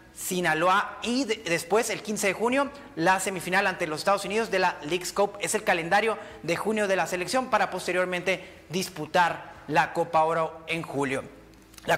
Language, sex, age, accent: Spanish, male, 30-49, Mexican